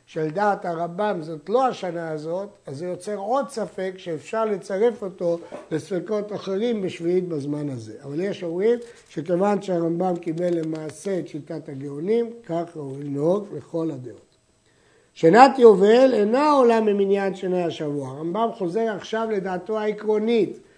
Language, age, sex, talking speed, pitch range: Hebrew, 60-79, male, 135 wpm, 170-225 Hz